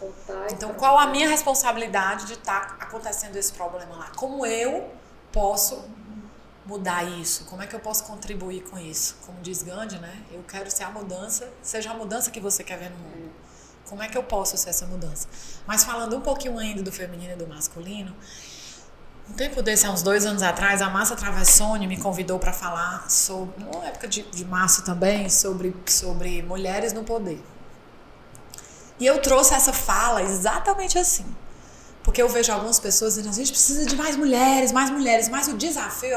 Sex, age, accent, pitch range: female, 20-39, Brazilian, 190-255 Hz